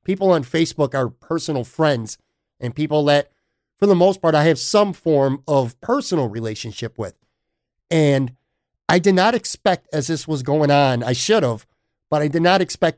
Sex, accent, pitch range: male, American, 140-180 Hz